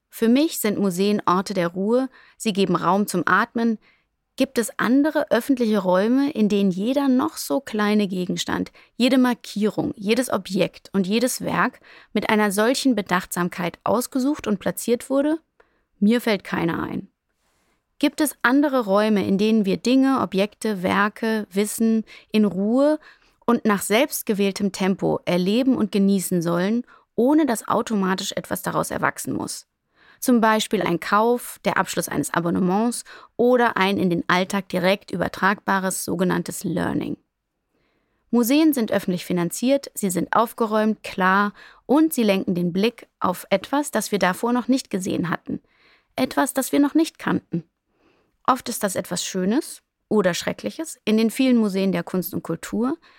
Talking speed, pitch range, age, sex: 150 wpm, 190-250 Hz, 30-49, female